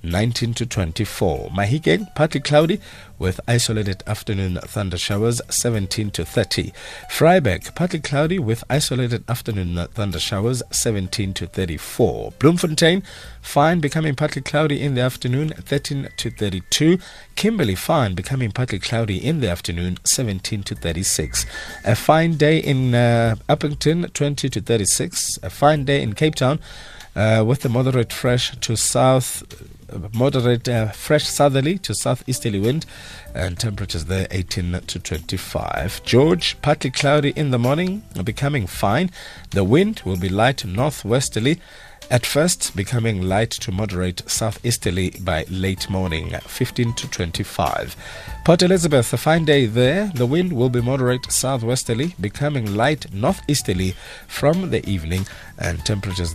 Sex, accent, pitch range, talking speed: male, South African, 95-145 Hz, 135 wpm